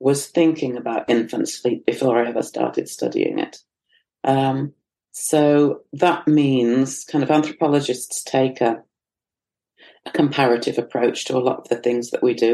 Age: 40-59